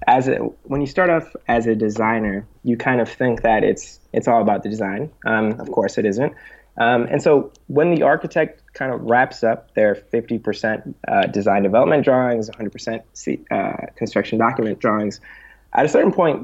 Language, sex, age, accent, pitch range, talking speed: English, male, 20-39, American, 110-125 Hz, 185 wpm